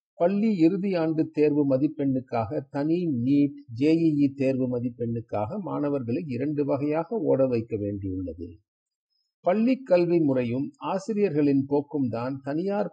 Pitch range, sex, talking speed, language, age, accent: 120-160 Hz, male, 105 wpm, Tamil, 50-69, native